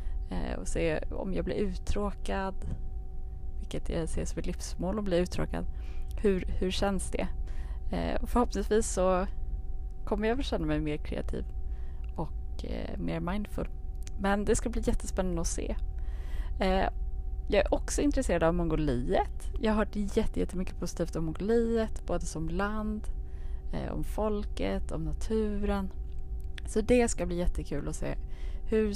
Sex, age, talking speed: female, 20-39, 145 wpm